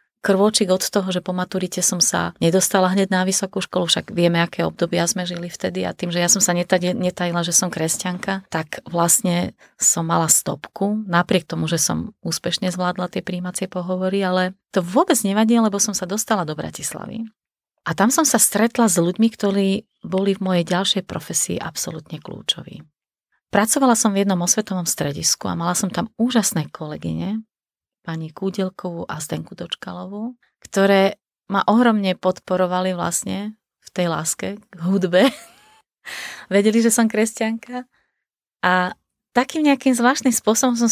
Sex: female